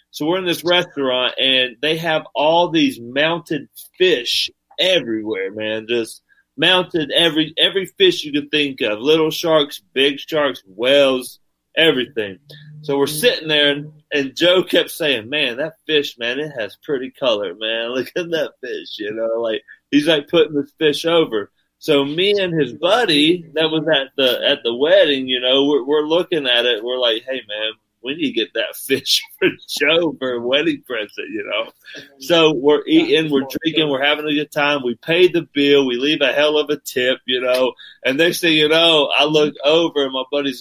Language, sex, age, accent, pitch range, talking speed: English, male, 30-49, American, 130-170 Hz, 190 wpm